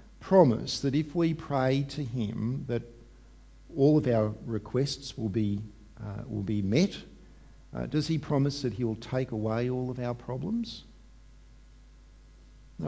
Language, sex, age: English, male, 50-69